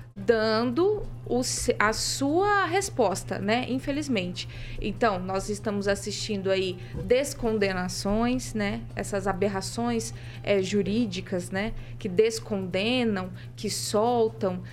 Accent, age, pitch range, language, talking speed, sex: Brazilian, 20-39, 200-285 Hz, Portuguese, 95 wpm, female